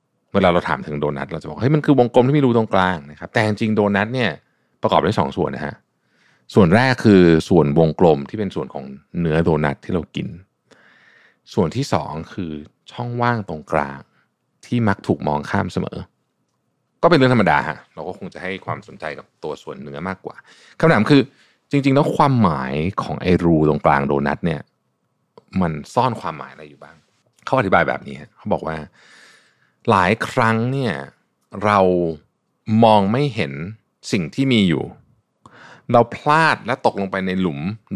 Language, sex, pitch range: Thai, male, 80-115 Hz